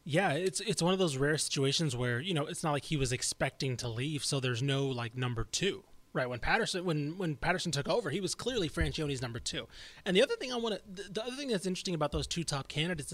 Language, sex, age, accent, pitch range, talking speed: English, male, 20-39, American, 130-175 Hz, 255 wpm